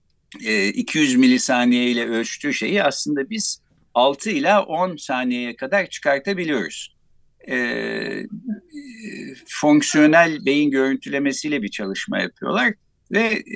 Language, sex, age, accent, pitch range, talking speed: Turkish, male, 60-79, native, 130-215 Hz, 95 wpm